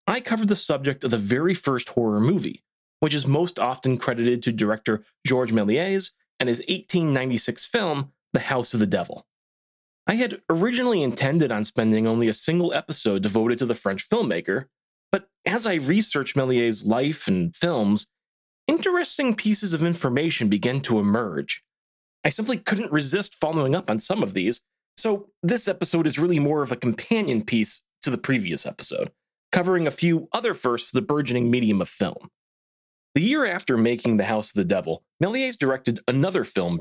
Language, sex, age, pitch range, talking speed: English, male, 30-49, 115-180 Hz, 175 wpm